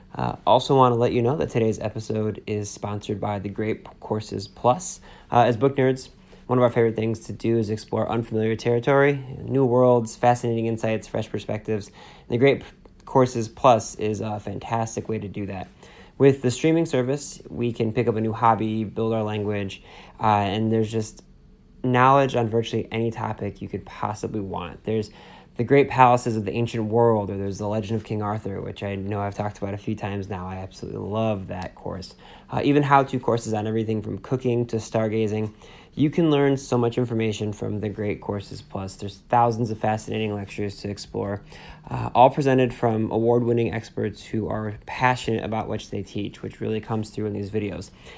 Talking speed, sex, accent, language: 190 wpm, male, American, English